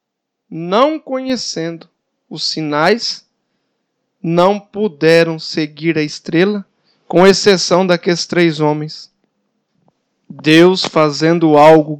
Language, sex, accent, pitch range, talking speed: Portuguese, male, Brazilian, 160-215 Hz, 85 wpm